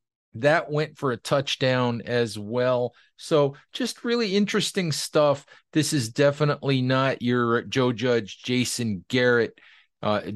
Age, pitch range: 40-59, 115-135 Hz